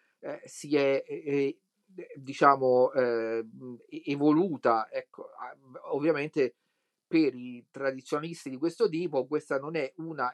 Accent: native